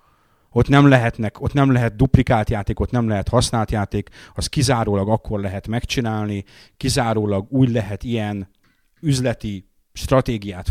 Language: Hungarian